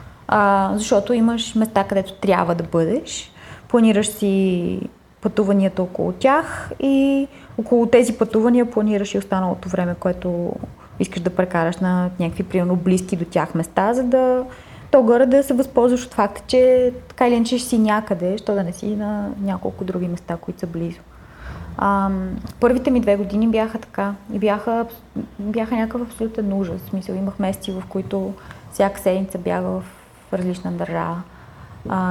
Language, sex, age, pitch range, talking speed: Bulgarian, female, 20-39, 180-220 Hz, 155 wpm